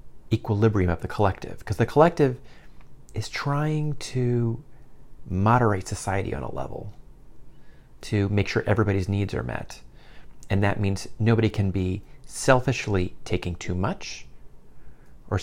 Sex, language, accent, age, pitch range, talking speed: male, English, American, 30-49, 95-120 Hz, 130 wpm